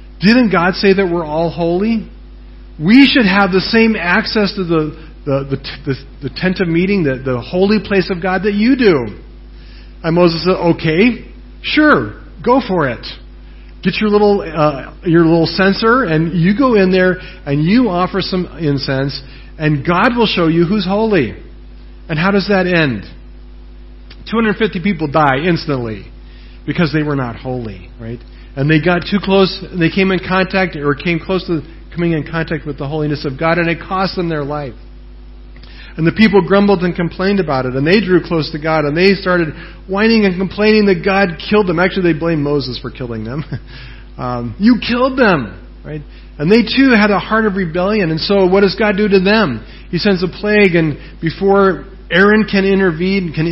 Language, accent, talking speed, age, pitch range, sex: English, American, 190 wpm, 40-59, 145-195 Hz, male